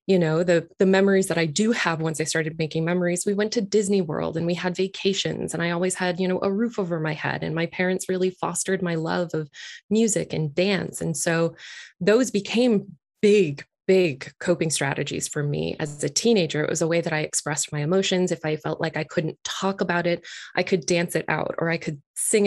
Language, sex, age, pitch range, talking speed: English, female, 20-39, 160-185 Hz, 225 wpm